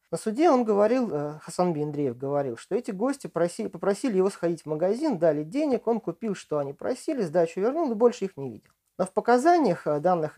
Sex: male